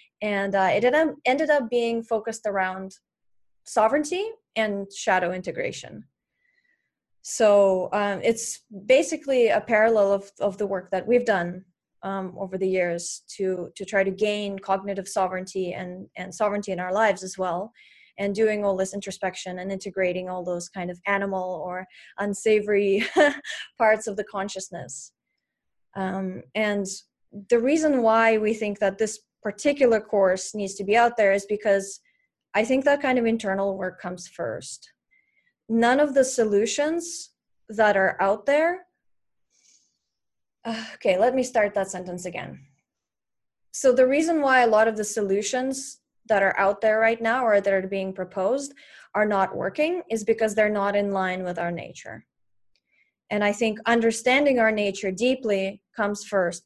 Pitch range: 190-235 Hz